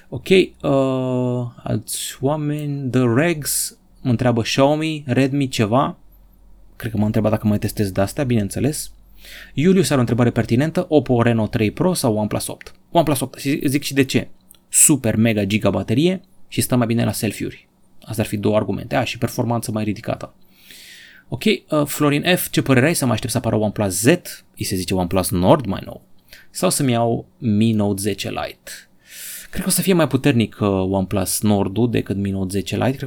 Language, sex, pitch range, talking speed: Romanian, male, 110-140 Hz, 185 wpm